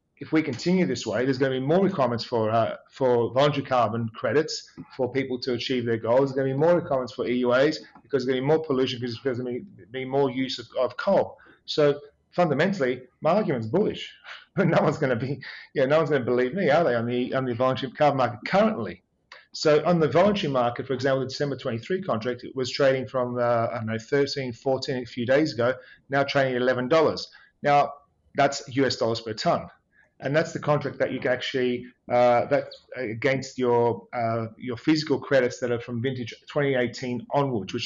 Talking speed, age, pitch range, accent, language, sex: 210 wpm, 40-59, 120-145 Hz, Australian, English, male